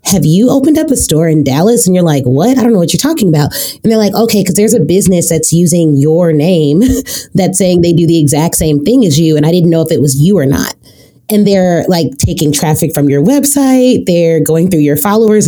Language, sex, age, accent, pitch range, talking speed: English, female, 30-49, American, 155-205 Hz, 250 wpm